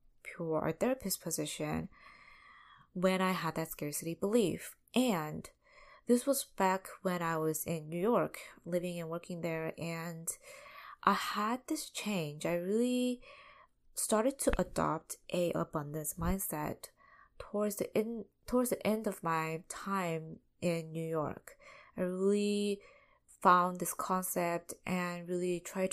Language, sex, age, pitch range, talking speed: English, female, 20-39, 160-210 Hz, 135 wpm